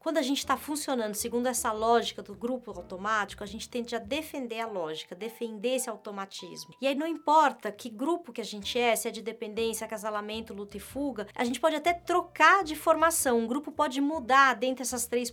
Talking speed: 210 wpm